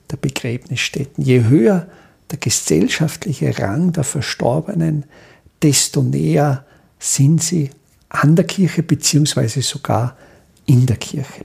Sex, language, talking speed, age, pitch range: male, German, 110 wpm, 50-69, 125-160 Hz